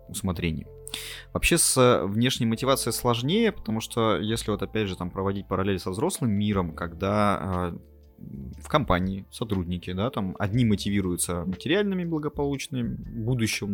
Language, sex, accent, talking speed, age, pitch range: Russian, male, native, 130 wpm, 20-39, 85-110 Hz